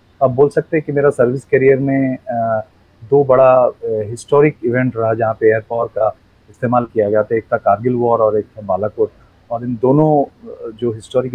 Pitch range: 110-130 Hz